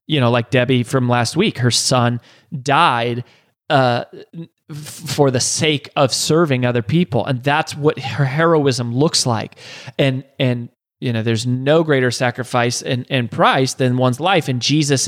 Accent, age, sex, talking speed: American, 30-49, male, 165 wpm